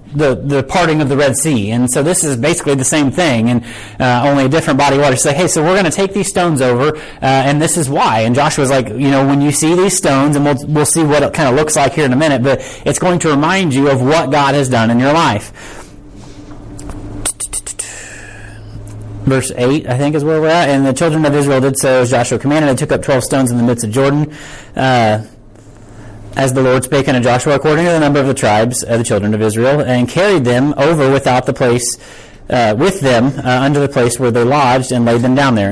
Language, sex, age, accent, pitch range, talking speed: English, male, 30-49, American, 120-145 Hz, 245 wpm